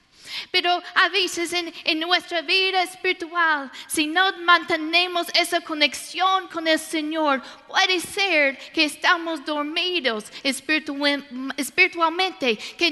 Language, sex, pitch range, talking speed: Spanish, female, 290-355 Hz, 105 wpm